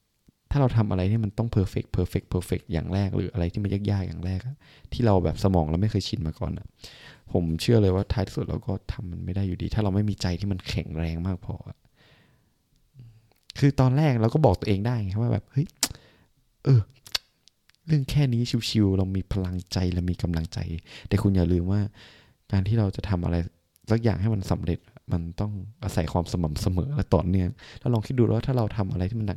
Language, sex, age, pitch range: Thai, male, 20-39, 90-115 Hz